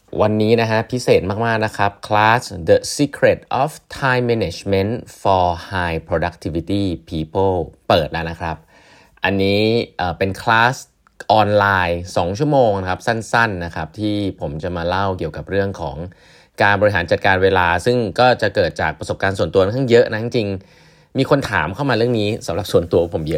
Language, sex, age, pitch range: Thai, male, 30-49, 85-110 Hz